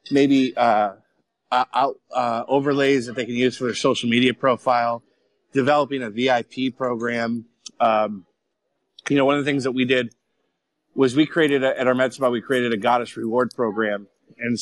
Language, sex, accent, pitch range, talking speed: English, male, American, 115-140 Hz, 170 wpm